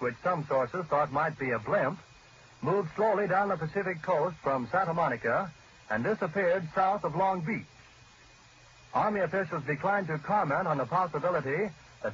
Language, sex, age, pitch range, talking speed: English, male, 60-79, 150-200 Hz, 160 wpm